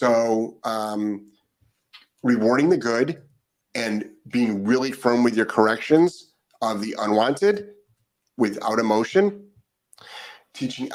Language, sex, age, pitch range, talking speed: English, male, 30-49, 115-170 Hz, 100 wpm